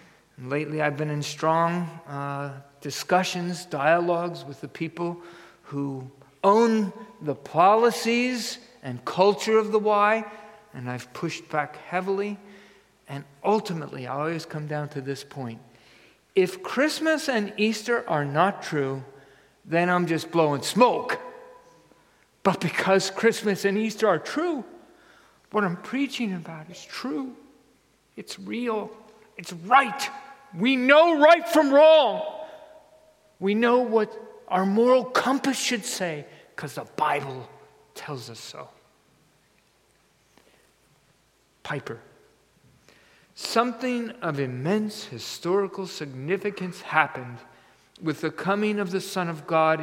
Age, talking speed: 50-69, 115 wpm